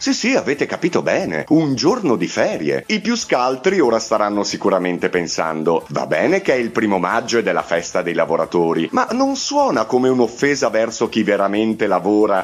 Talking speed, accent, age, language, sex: 180 wpm, native, 30-49, Italian, male